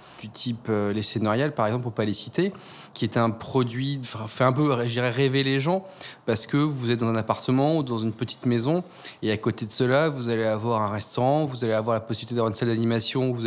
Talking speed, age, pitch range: 250 wpm, 20-39, 115-135 Hz